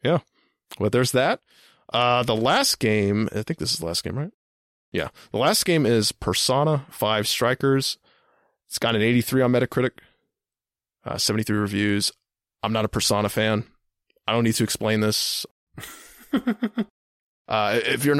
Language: English